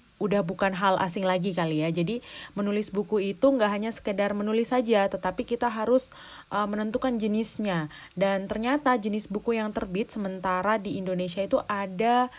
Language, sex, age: Indonesian, female, 30-49